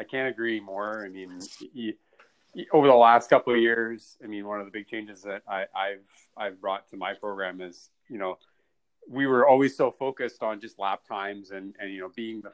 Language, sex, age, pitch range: English, male, 30-49, 100-120 Hz